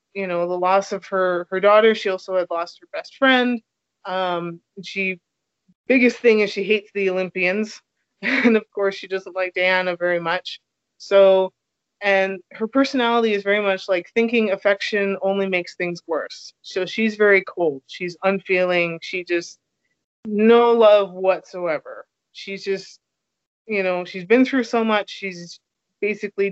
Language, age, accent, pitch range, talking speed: English, 20-39, American, 180-220 Hz, 155 wpm